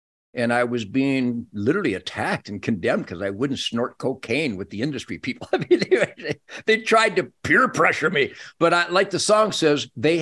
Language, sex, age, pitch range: English, male, 60-79, 115-150 Hz